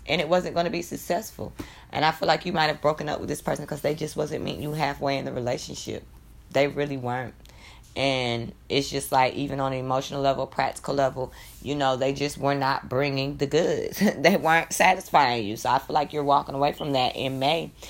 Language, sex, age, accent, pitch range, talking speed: English, female, 20-39, American, 125-145 Hz, 225 wpm